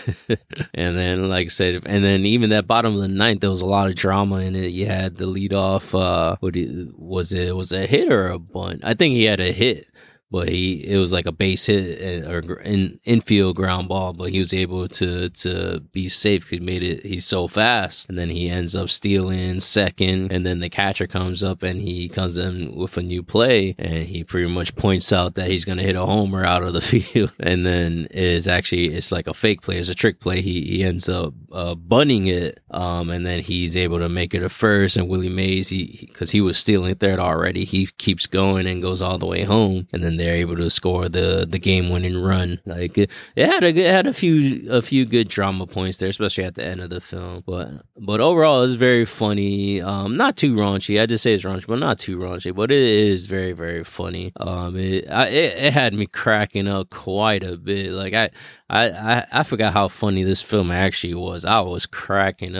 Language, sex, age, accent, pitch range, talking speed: English, male, 20-39, American, 90-100 Hz, 235 wpm